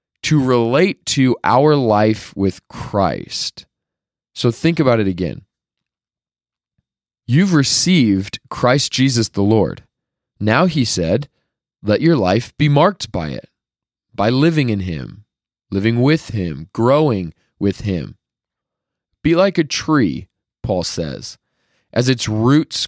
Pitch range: 100-130 Hz